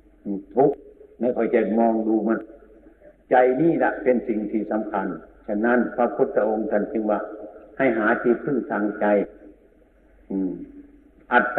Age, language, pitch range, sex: 60-79, Thai, 105-135 Hz, male